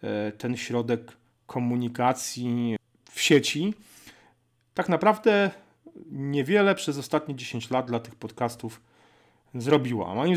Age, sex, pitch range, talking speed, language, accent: 30-49, male, 125-150 Hz, 105 wpm, Polish, native